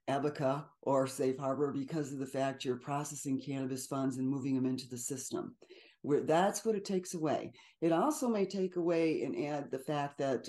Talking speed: 195 wpm